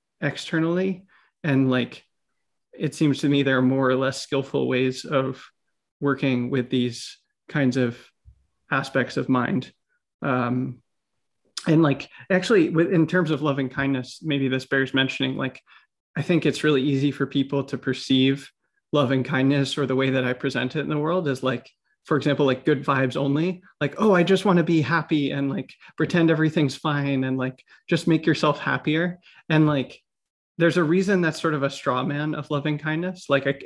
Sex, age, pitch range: male, 30-49, 130-155 Hz